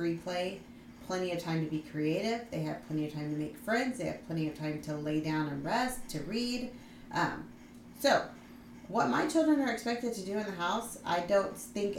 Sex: female